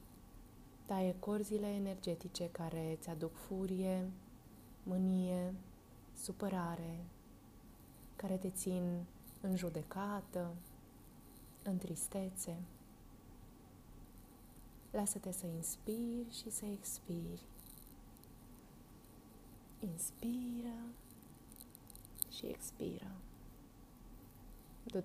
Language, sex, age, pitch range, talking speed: Romanian, female, 20-39, 165-195 Hz, 60 wpm